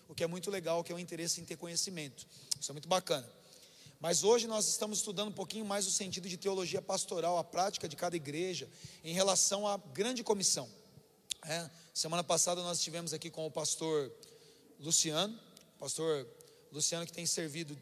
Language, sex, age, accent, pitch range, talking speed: Portuguese, male, 30-49, Brazilian, 150-180 Hz, 190 wpm